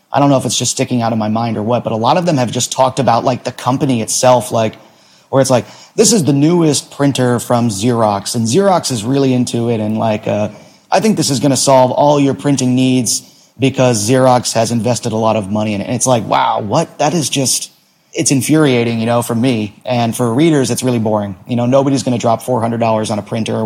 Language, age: English, 30-49